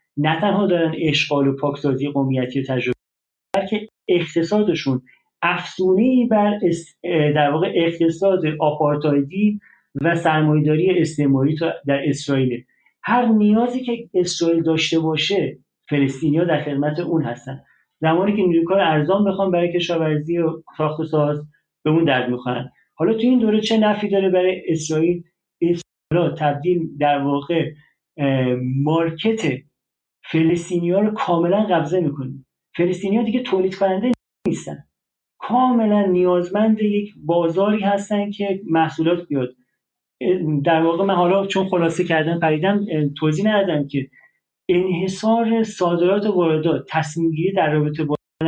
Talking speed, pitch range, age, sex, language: 120 wpm, 150-190 Hz, 40-59, male, Persian